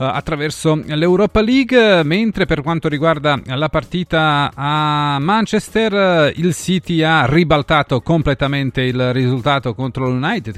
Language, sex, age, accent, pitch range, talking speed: Italian, male, 40-59, native, 125-155 Hz, 115 wpm